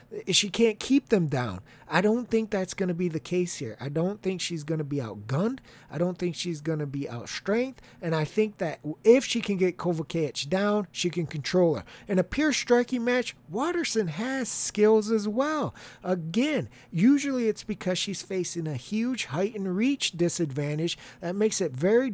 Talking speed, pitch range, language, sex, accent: 190 wpm, 165-220 Hz, English, male, American